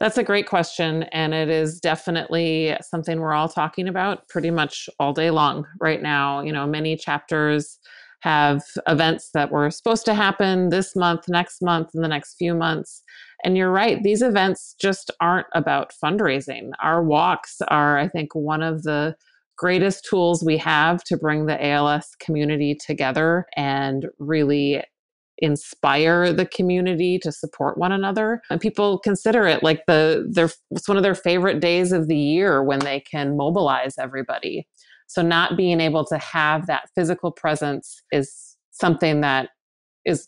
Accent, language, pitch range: American, English, 155-185 Hz